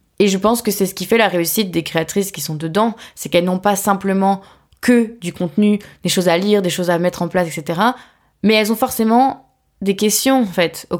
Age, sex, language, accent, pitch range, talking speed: 20-39, female, French, French, 175-225 Hz, 235 wpm